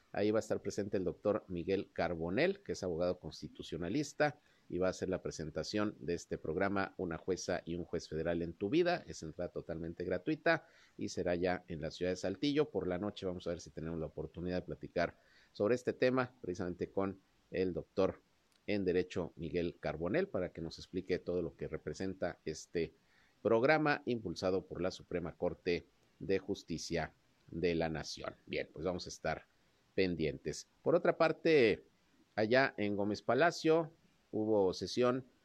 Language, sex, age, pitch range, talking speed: Spanish, male, 50-69, 85-125 Hz, 170 wpm